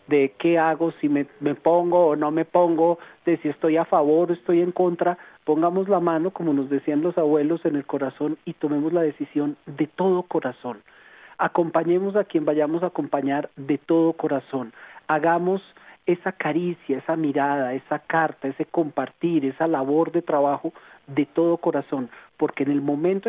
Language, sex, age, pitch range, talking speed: Spanish, male, 40-59, 145-175 Hz, 175 wpm